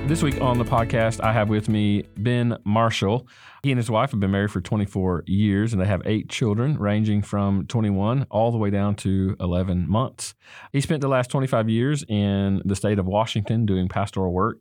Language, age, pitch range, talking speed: English, 40-59, 95-115 Hz, 205 wpm